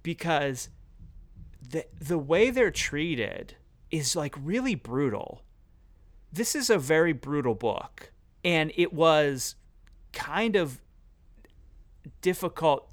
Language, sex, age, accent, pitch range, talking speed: English, male, 30-49, American, 120-170 Hz, 100 wpm